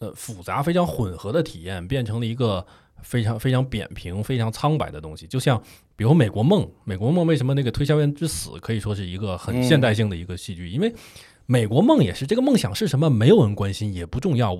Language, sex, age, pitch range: Chinese, male, 20-39, 105-165 Hz